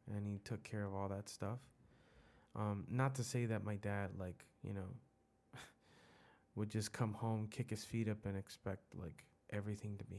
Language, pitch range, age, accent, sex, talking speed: English, 100-115 Hz, 20-39, American, male, 190 wpm